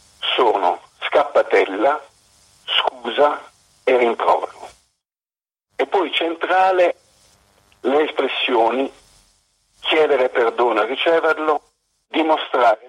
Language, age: Italian, 50-69